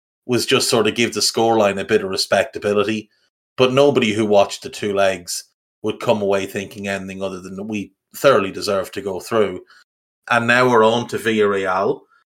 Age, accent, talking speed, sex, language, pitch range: 30-49, Irish, 185 wpm, male, English, 100-115 Hz